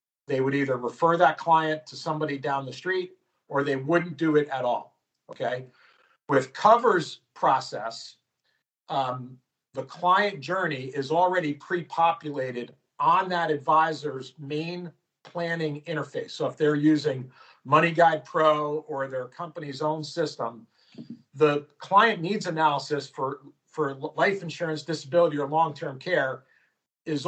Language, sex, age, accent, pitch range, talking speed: English, male, 50-69, American, 145-175 Hz, 130 wpm